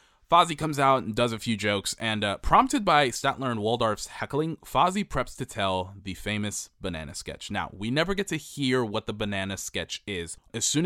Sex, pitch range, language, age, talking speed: male, 100-130 Hz, English, 20-39, 205 wpm